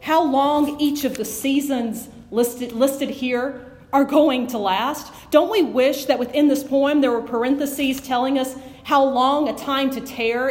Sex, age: female, 40-59